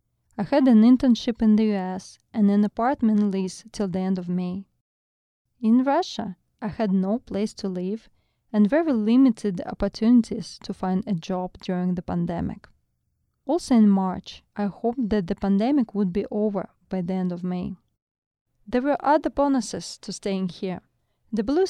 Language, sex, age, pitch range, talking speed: English, female, 20-39, 195-240 Hz, 165 wpm